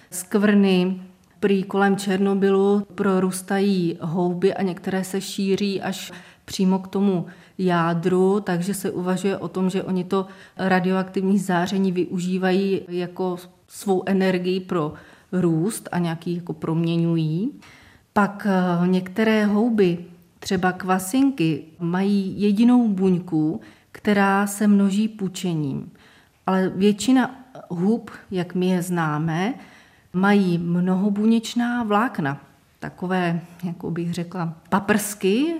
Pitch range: 175-195 Hz